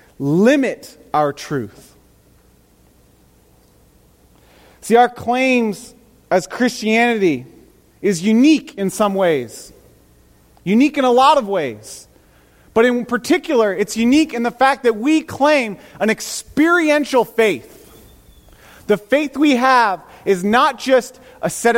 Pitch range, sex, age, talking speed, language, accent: 205-285 Hz, male, 30-49, 115 wpm, English, American